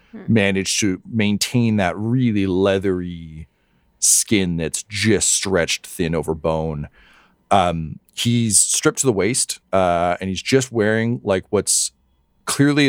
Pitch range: 80-110 Hz